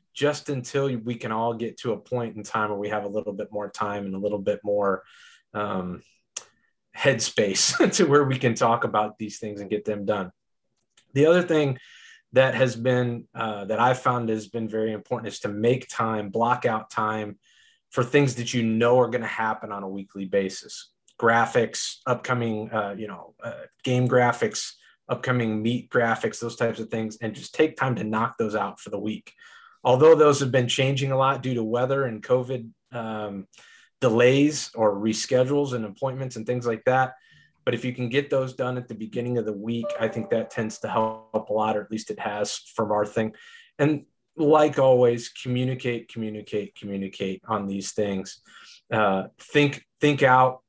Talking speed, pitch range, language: 190 wpm, 110-130 Hz, English